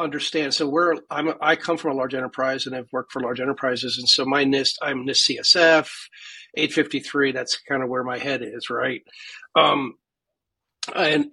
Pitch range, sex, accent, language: 135-165 Hz, male, American, English